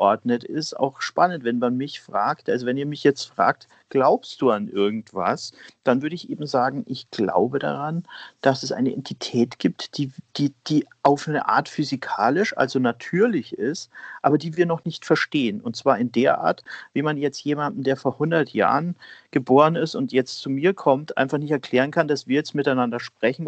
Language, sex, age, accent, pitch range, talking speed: German, male, 50-69, German, 125-155 Hz, 190 wpm